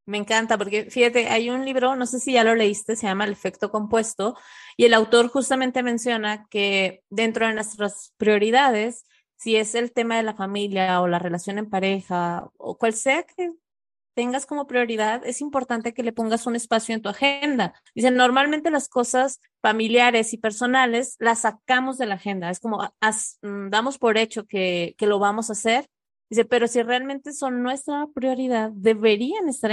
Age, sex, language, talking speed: 20-39, female, Spanish, 180 wpm